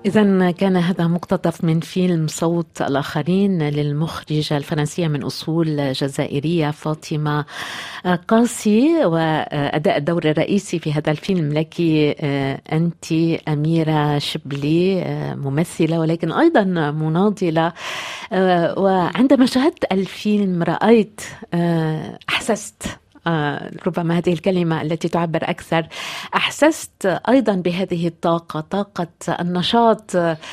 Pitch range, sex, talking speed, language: 160-200 Hz, female, 90 wpm, Arabic